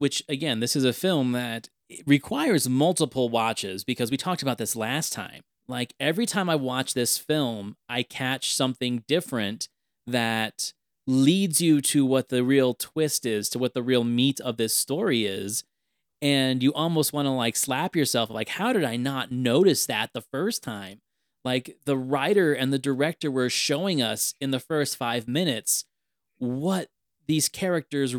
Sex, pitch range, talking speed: male, 120-155 Hz, 170 wpm